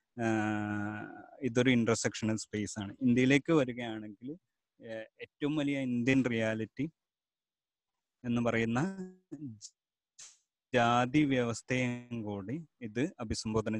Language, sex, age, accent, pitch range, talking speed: Malayalam, male, 30-49, native, 115-145 Hz, 75 wpm